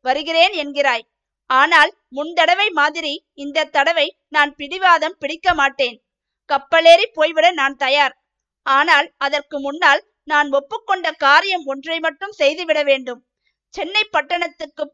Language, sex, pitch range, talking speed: Tamil, female, 280-335 Hz, 90 wpm